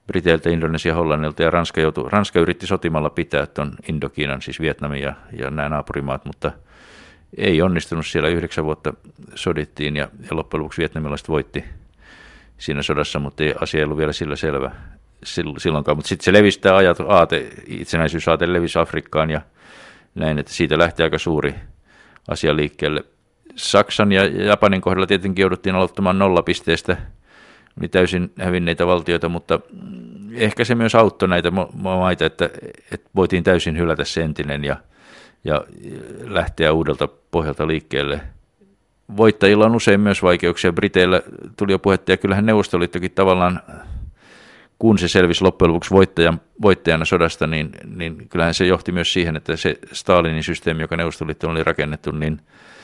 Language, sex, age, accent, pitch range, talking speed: Finnish, male, 50-69, native, 75-95 Hz, 150 wpm